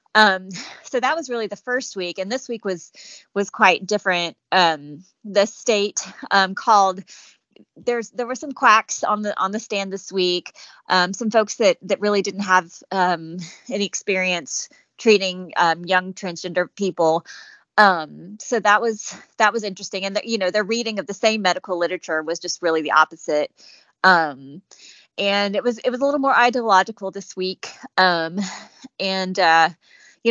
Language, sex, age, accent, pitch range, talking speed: English, female, 30-49, American, 175-215 Hz, 170 wpm